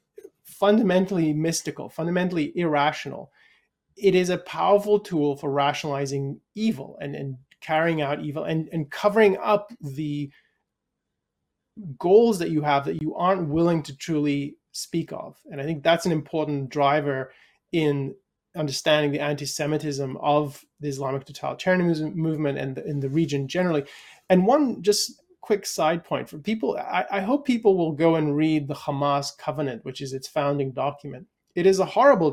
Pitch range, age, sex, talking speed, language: 145-190 Hz, 30-49, male, 155 wpm, English